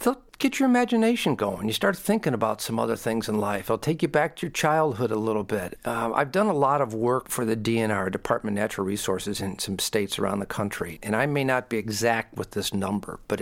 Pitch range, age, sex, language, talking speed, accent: 115-155 Hz, 50-69, male, English, 235 wpm, American